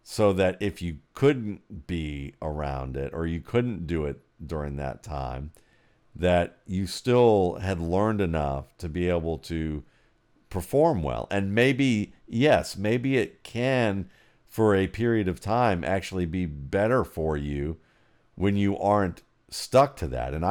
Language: English